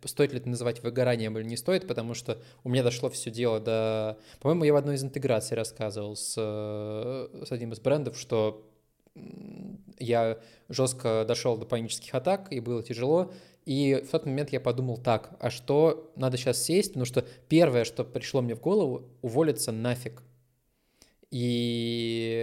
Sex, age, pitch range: male, 20-39, 115-135 Hz